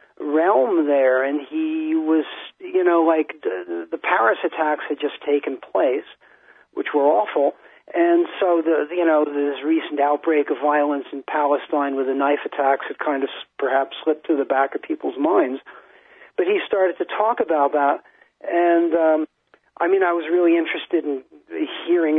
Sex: male